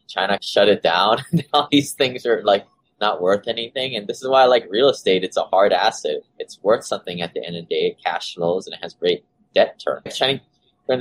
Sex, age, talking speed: male, 20-39, 245 wpm